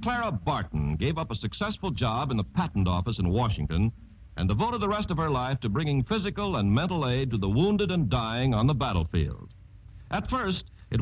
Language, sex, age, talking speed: English, male, 60-79, 200 wpm